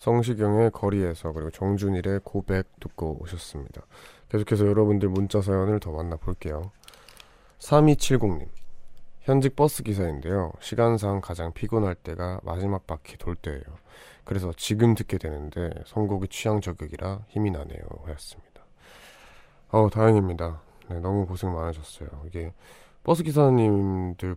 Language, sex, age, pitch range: Korean, male, 20-39, 85-110 Hz